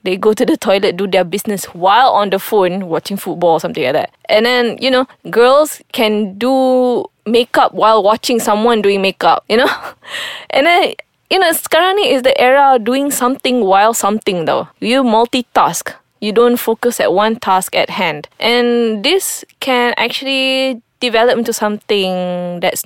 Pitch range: 195-250 Hz